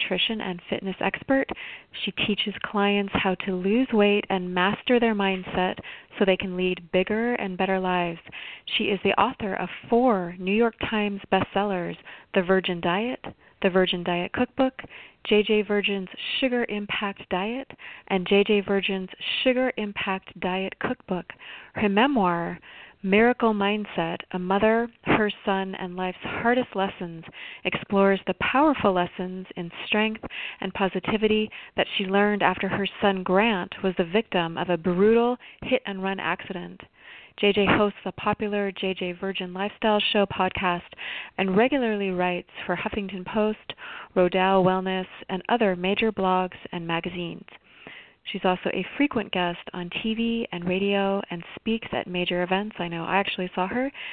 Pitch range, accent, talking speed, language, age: 185-220 Hz, American, 145 wpm, English, 30-49